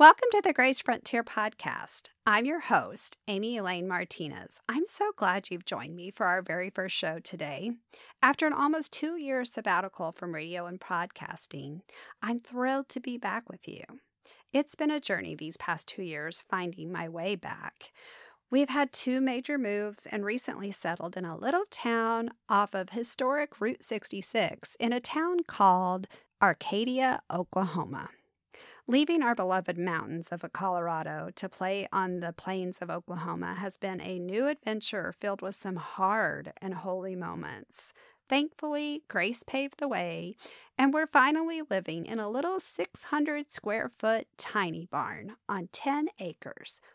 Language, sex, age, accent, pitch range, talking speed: English, female, 50-69, American, 185-270 Hz, 150 wpm